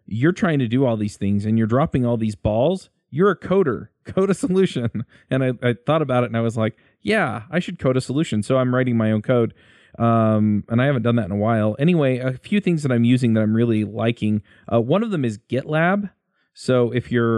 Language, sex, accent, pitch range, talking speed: English, male, American, 105-125 Hz, 240 wpm